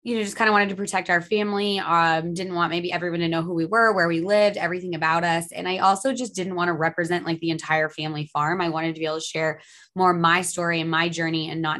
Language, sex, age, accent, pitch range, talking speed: English, female, 20-39, American, 160-190 Hz, 280 wpm